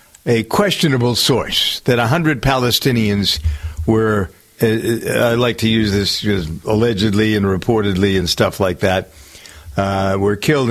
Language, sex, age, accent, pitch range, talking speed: English, male, 60-79, American, 105-130 Hz, 135 wpm